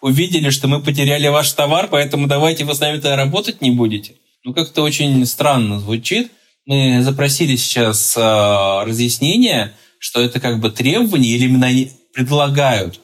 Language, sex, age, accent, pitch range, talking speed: Russian, male, 20-39, native, 115-150 Hz, 155 wpm